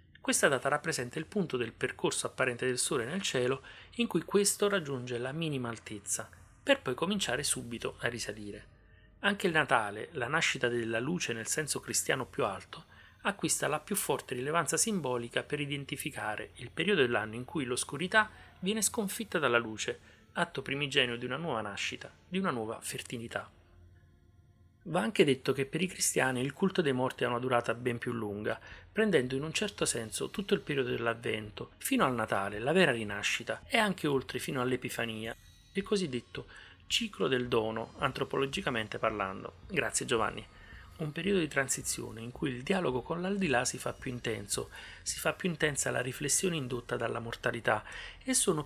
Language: Italian